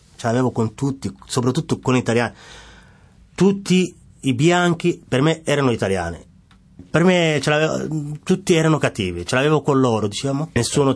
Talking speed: 140 wpm